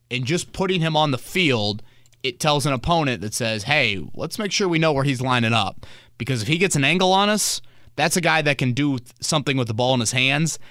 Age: 30-49